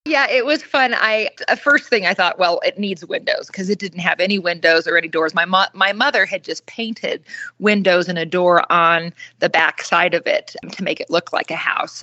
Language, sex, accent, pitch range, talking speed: English, female, American, 175-220 Hz, 235 wpm